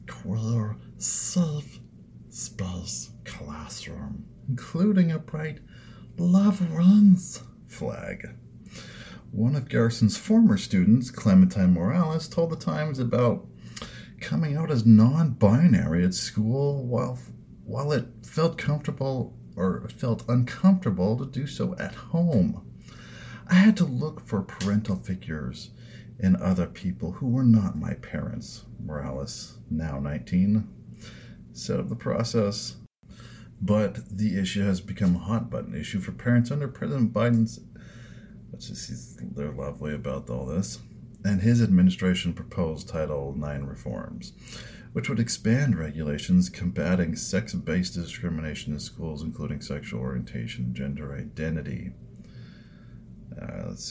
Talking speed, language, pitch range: 120 wpm, English, 85-135 Hz